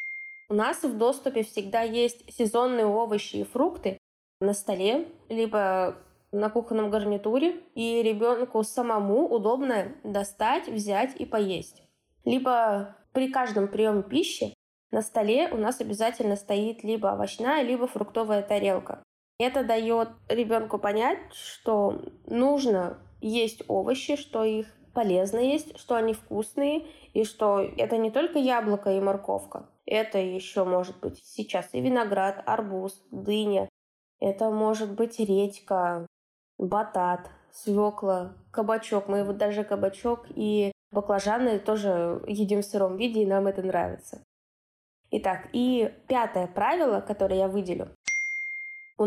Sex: female